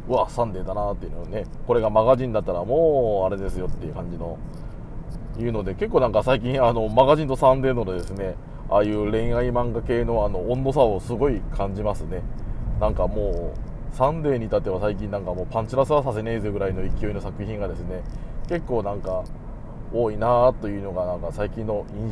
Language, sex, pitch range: Japanese, male, 100-135 Hz